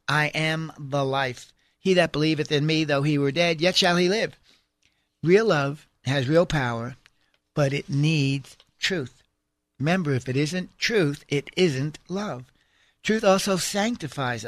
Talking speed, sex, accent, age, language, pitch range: 155 wpm, male, American, 60-79, English, 150-190 Hz